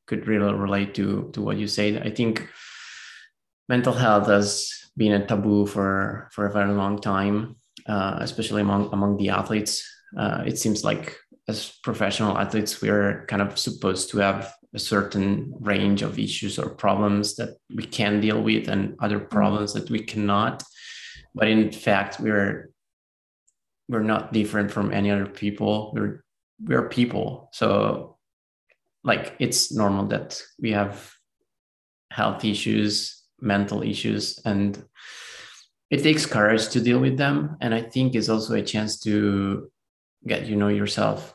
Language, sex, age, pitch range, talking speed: English, male, 20-39, 100-110 Hz, 155 wpm